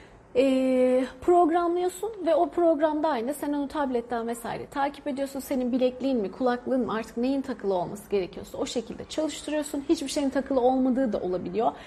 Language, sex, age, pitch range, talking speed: Turkish, female, 40-59, 215-290 Hz, 150 wpm